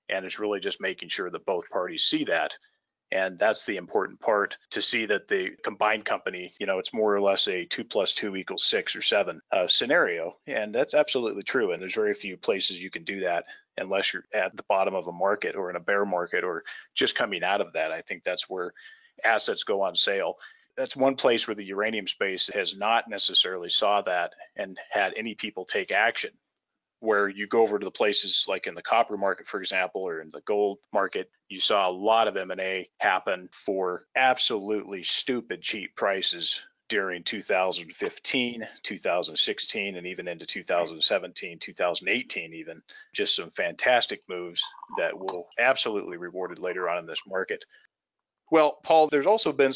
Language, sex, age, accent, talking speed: English, male, 30-49, American, 185 wpm